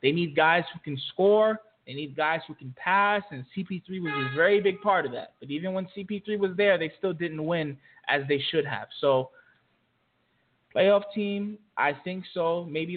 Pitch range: 140-170 Hz